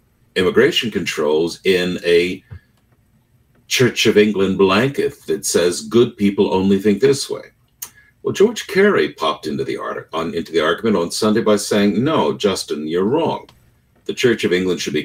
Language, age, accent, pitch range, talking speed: English, 60-79, American, 95-155 Hz, 165 wpm